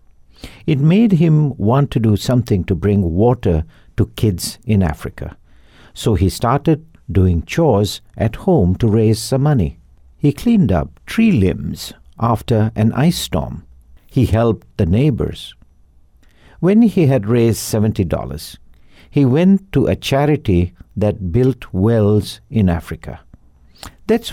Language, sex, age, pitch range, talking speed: English, male, 60-79, 85-135 Hz, 135 wpm